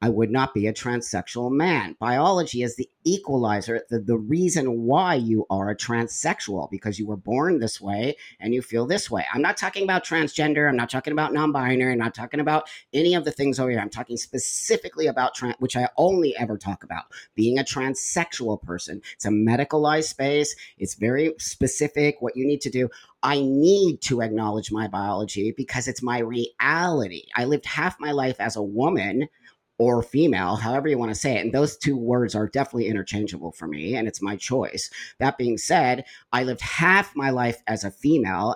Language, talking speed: English, 200 wpm